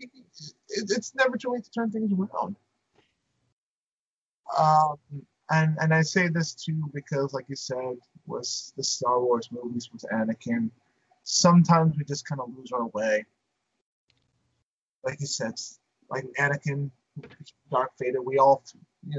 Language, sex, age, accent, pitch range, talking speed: English, male, 30-49, American, 120-160 Hz, 140 wpm